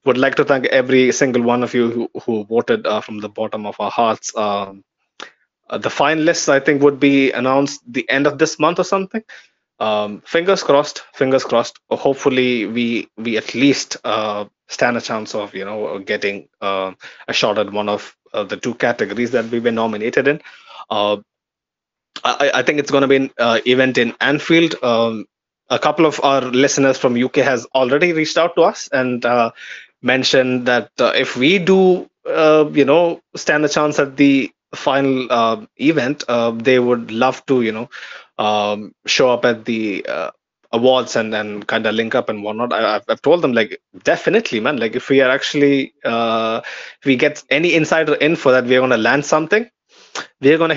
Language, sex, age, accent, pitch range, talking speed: English, male, 20-39, Indian, 115-145 Hz, 190 wpm